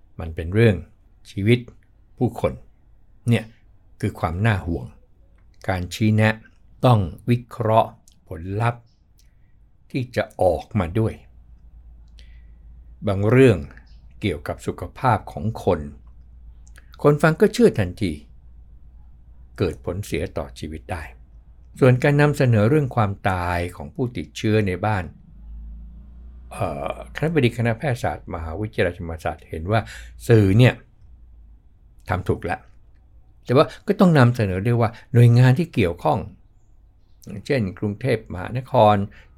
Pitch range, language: 85-110 Hz, Thai